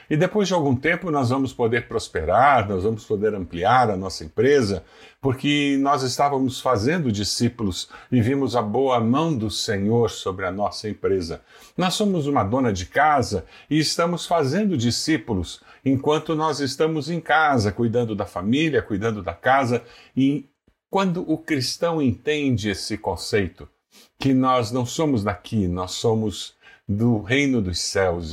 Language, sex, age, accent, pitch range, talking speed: Portuguese, male, 50-69, Brazilian, 115-155 Hz, 150 wpm